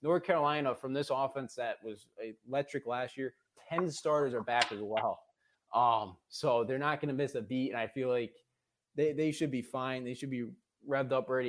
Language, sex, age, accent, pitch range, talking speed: English, male, 20-39, American, 120-140 Hz, 210 wpm